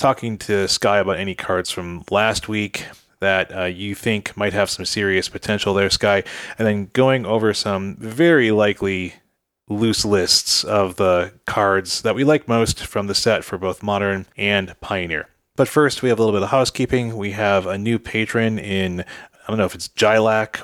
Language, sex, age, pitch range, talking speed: English, male, 30-49, 95-115 Hz, 190 wpm